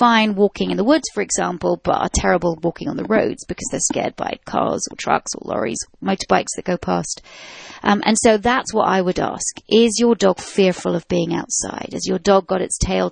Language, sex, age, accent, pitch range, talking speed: English, female, 30-49, British, 180-215 Hz, 220 wpm